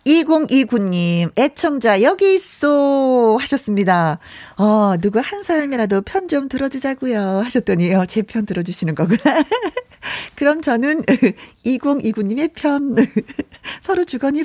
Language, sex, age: Korean, female, 40-59